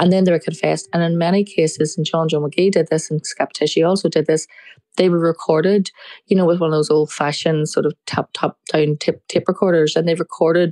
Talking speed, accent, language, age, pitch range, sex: 230 wpm, Irish, English, 20-39, 150-170 Hz, female